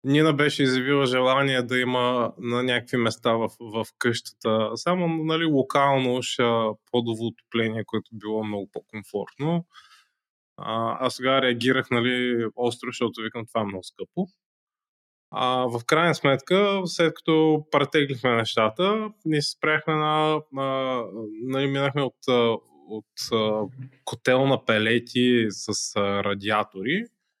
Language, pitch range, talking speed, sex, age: Bulgarian, 115-145 Hz, 120 wpm, male, 20-39